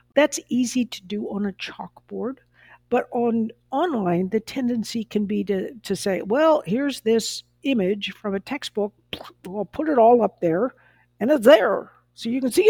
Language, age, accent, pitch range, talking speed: English, 60-79, American, 195-245 Hz, 180 wpm